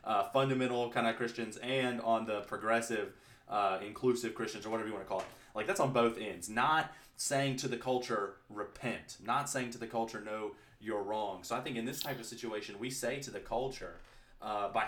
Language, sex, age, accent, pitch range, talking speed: English, male, 20-39, American, 110-125 Hz, 215 wpm